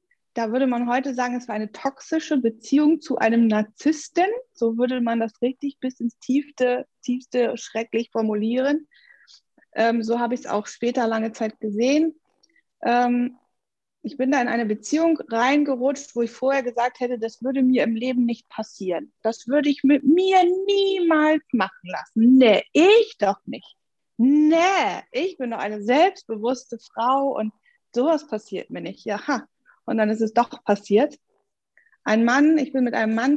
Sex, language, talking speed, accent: female, German, 165 wpm, German